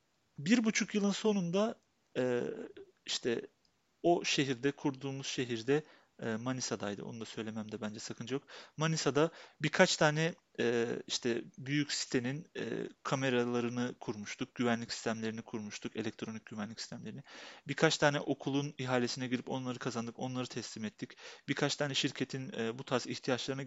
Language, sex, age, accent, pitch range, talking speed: Turkish, male, 40-59, native, 120-160 Hz, 115 wpm